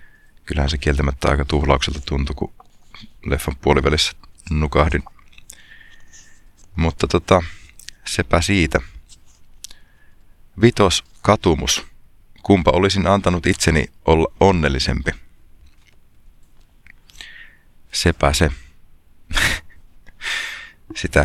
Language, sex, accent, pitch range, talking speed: Finnish, male, native, 70-85 Hz, 70 wpm